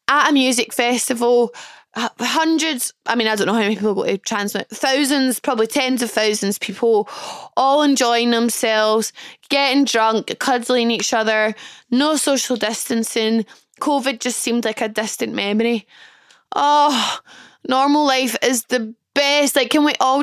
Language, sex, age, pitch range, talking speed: English, female, 10-29, 215-265 Hz, 145 wpm